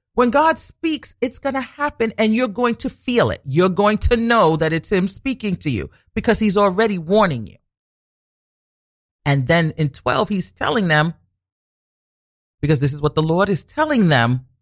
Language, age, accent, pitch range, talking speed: English, 40-59, American, 145-225 Hz, 180 wpm